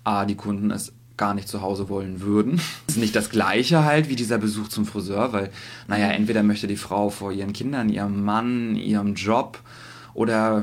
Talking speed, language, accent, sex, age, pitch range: 190 wpm, German, German, male, 20-39, 105-120 Hz